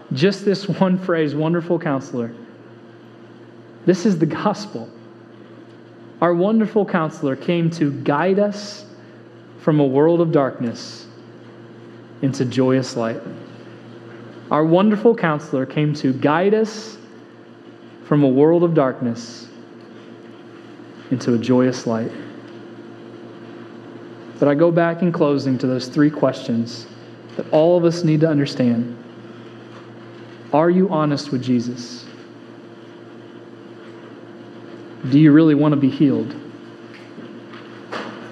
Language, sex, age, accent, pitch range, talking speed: English, male, 30-49, American, 120-170 Hz, 110 wpm